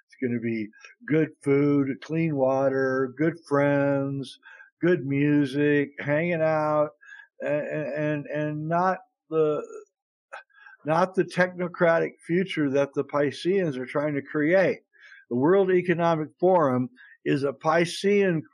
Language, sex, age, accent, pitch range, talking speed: English, male, 60-79, American, 140-180 Hz, 120 wpm